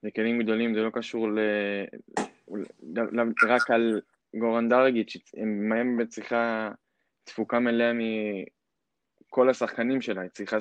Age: 20-39